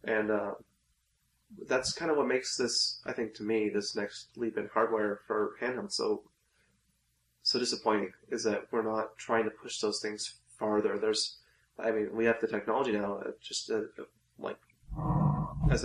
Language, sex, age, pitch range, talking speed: English, male, 20-39, 105-120 Hz, 170 wpm